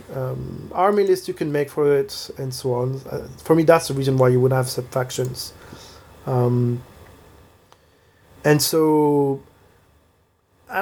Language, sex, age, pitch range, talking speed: English, male, 30-49, 130-155 Hz, 150 wpm